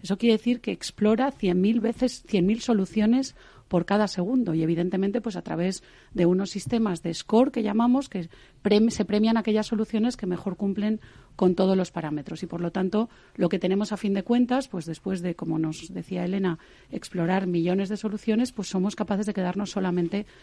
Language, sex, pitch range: Spanish, female, 180-220 Hz